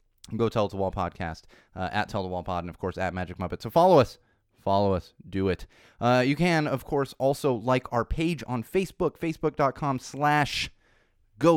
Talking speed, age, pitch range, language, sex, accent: 205 wpm, 20-39, 105-135 Hz, English, male, American